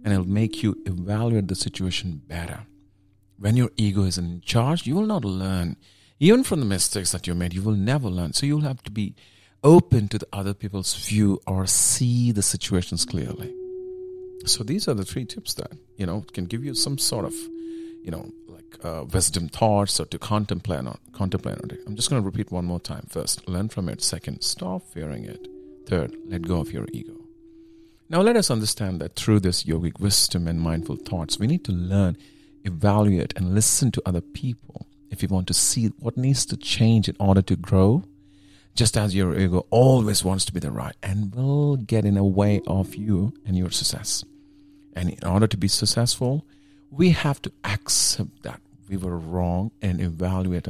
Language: English